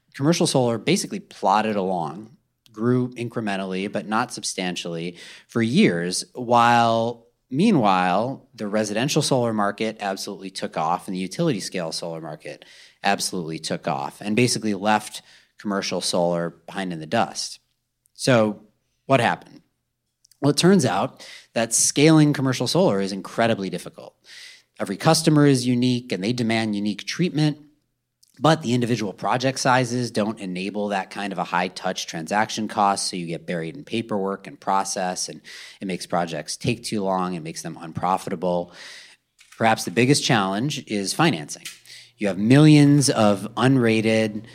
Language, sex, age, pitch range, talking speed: English, male, 30-49, 95-125 Hz, 140 wpm